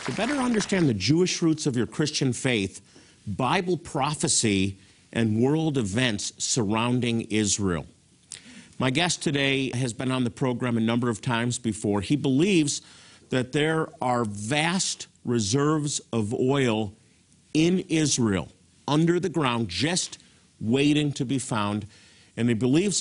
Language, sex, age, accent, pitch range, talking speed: English, male, 50-69, American, 110-150 Hz, 135 wpm